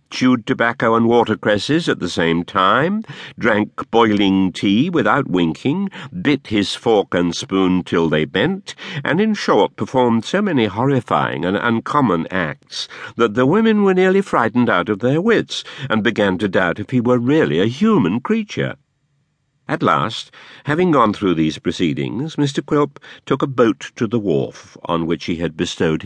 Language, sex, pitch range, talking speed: English, male, 95-145 Hz, 165 wpm